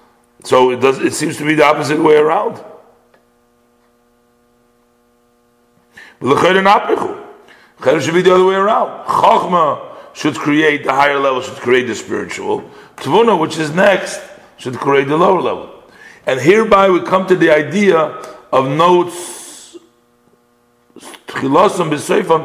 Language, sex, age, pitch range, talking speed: English, male, 50-69, 110-160 Hz, 125 wpm